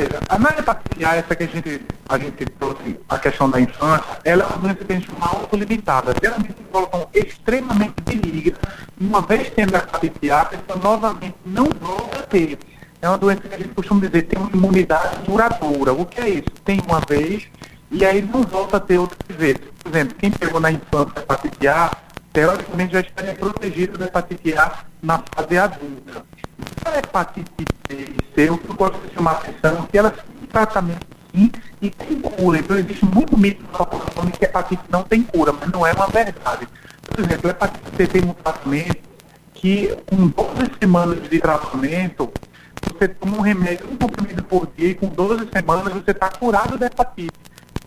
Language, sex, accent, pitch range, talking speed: Portuguese, male, Brazilian, 165-205 Hz, 190 wpm